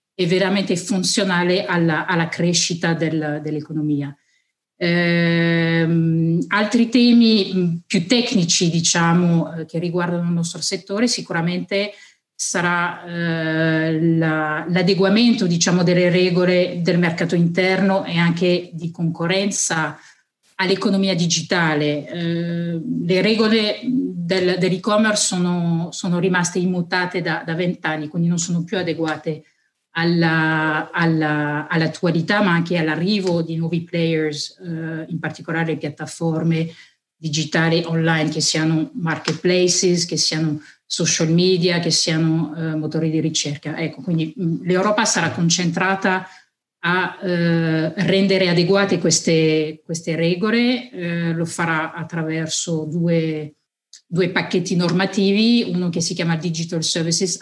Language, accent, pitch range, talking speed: Italian, native, 160-185 Hz, 110 wpm